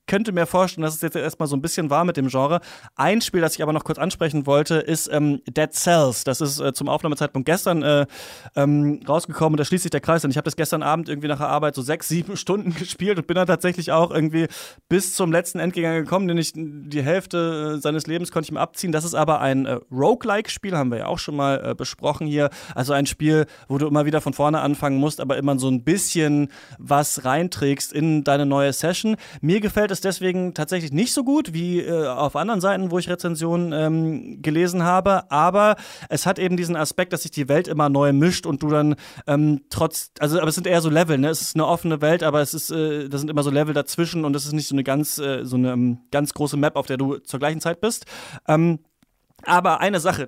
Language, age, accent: German, 20-39, German